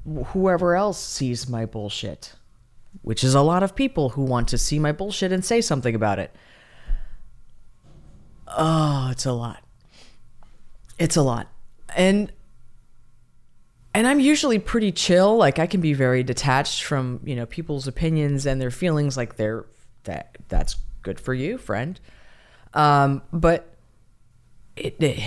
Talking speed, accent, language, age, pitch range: 140 wpm, American, English, 20-39, 120-155 Hz